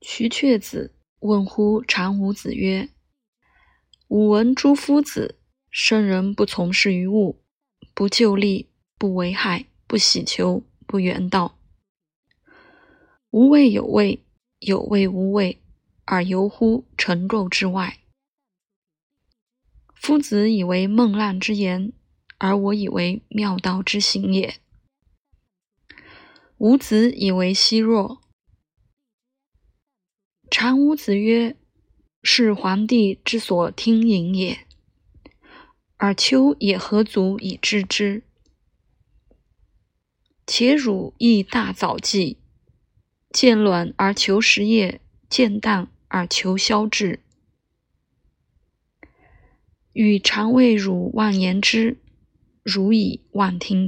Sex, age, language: female, 20-39, Chinese